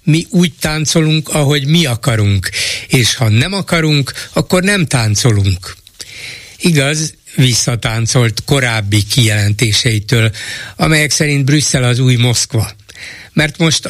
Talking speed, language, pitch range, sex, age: 110 wpm, Hungarian, 115-145 Hz, male, 60-79